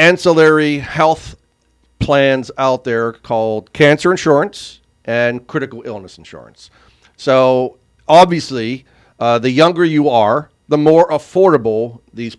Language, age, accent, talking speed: English, 50-69, American, 110 wpm